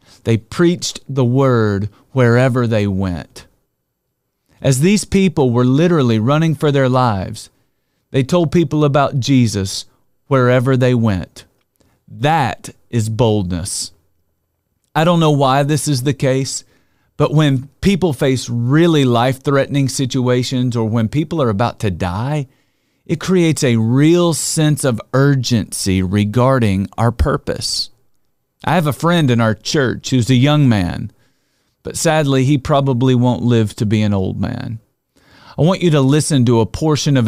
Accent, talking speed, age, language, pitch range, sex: American, 145 wpm, 40-59, English, 115-145 Hz, male